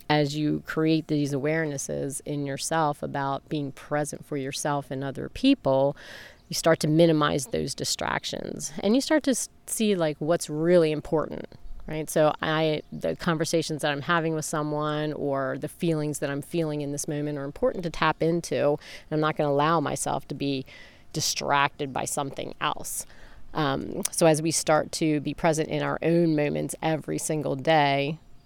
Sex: female